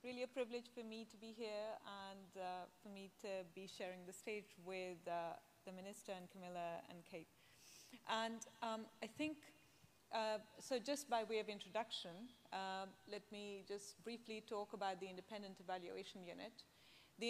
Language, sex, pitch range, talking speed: English, female, 190-230 Hz, 165 wpm